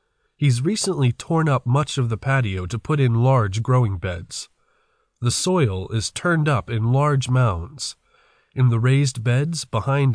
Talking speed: 160 wpm